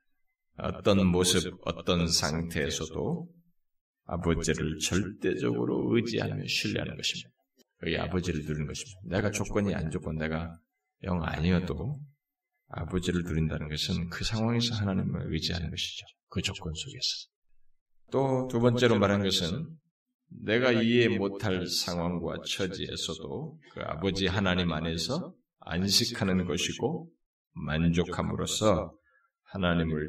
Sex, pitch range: male, 85-120 Hz